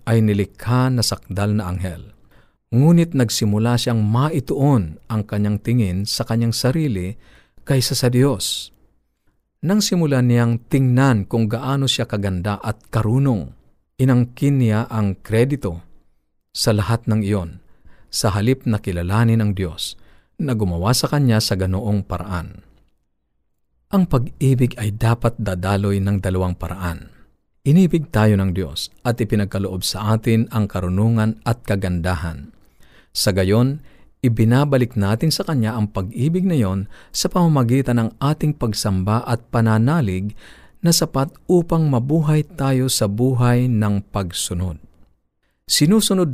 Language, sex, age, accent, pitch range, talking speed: Filipino, male, 50-69, native, 100-130 Hz, 125 wpm